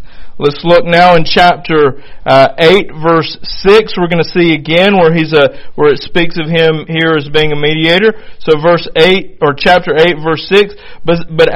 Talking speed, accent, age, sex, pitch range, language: 190 wpm, American, 40-59, male, 160-200 Hz, English